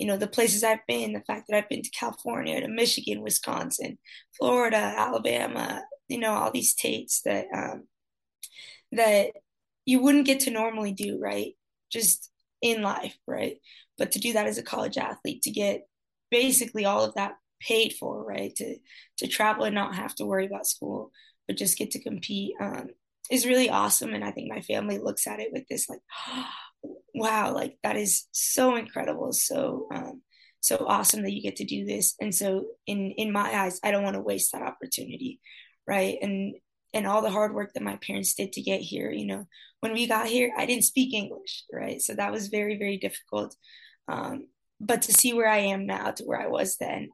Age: 20-39